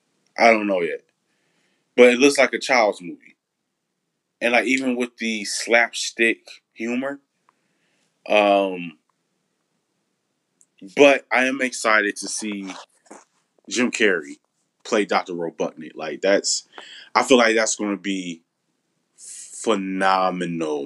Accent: American